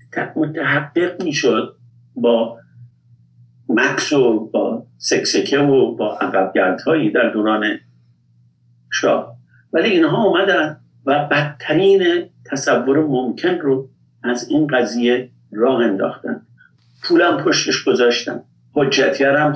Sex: male